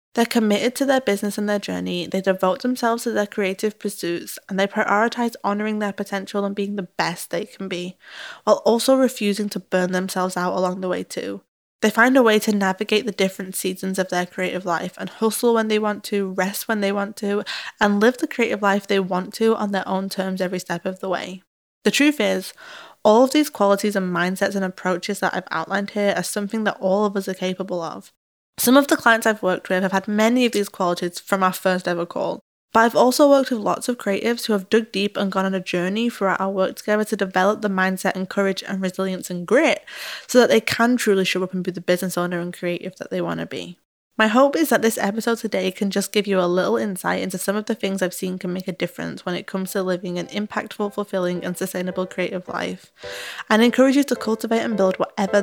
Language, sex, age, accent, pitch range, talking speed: English, female, 10-29, British, 185-220 Hz, 235 wpm